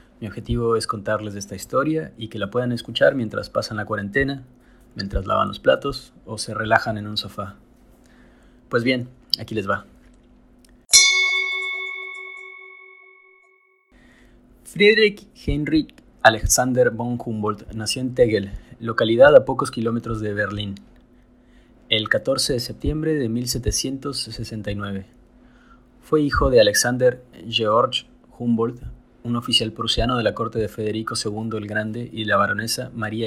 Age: 30-49